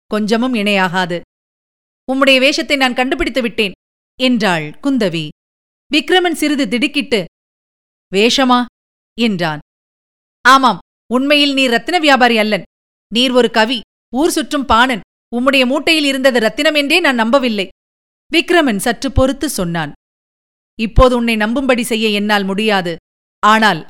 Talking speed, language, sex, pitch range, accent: 105 wpm, Tamil, female, 210-265 Hz, native